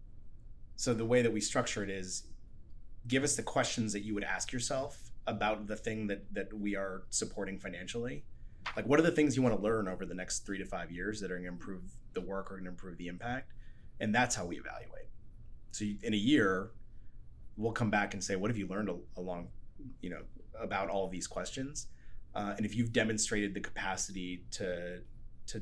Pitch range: 95-115 Hz